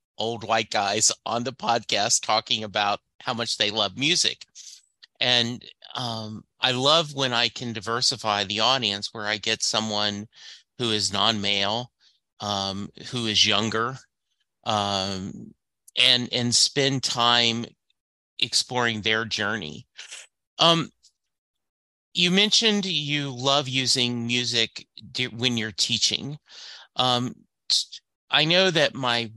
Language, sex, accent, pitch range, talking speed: English, male, American, 110-130 Hz, 115 wpm